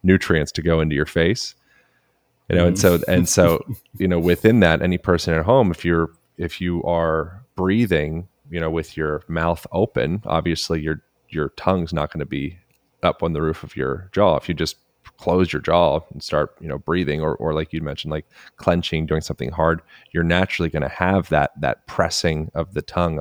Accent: American